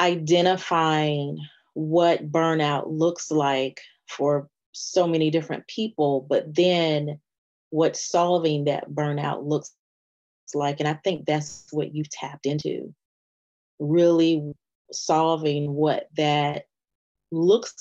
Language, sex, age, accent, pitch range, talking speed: English, female, 30-49, American, 145-165 Hz, 105 wpm